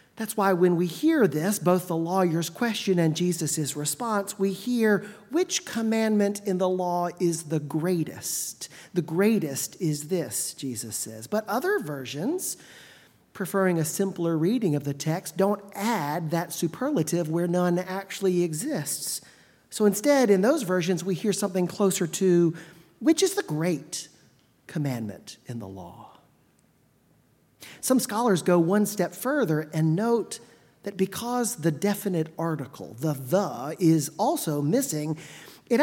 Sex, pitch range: male, 160-215 Hz